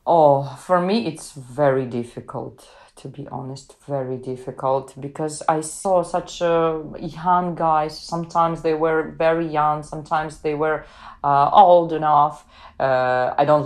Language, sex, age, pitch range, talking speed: English, female, 30-49, 150-180 Hz, 140 wpm